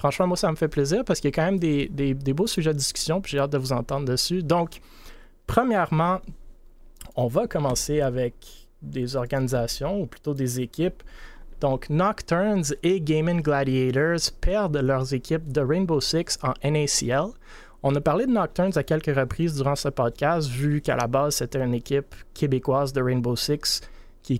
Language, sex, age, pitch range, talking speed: French, male, 30-49, 130-155 Hz, 180 wpm